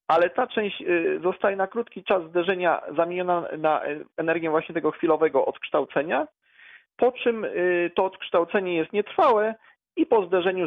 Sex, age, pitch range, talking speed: male, 40-59, 135-205 Hz, 135 wpm